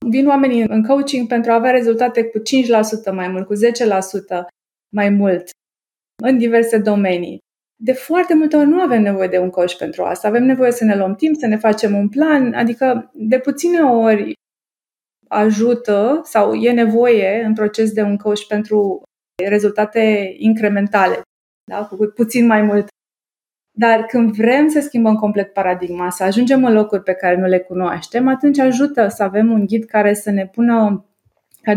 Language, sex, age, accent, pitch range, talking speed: Romanian, female, 20-39, native, 205-240 Hz, 170 wpm